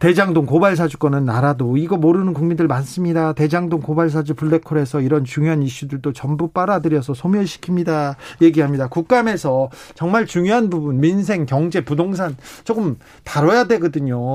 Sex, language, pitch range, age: male, Korean, 140-175 Hz, 40-59